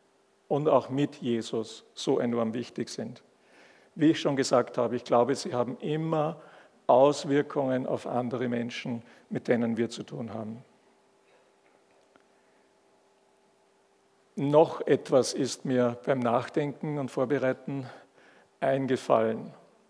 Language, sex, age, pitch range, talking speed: German, male, 50-69, 125-150 Hz, 110 wpm